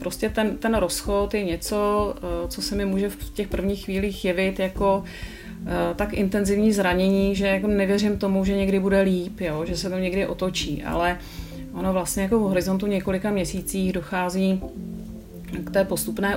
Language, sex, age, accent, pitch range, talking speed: Czech, female, 30-49, native, 170-195 Hz, 165 wpm